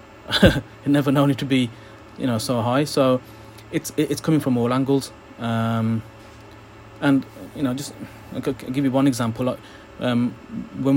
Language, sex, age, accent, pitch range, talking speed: English, male, 30-49, British, 110-125 Hz, 165 wpm